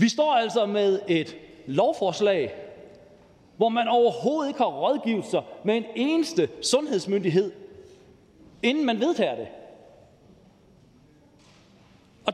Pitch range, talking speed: 195-280 Hz, 100 wpm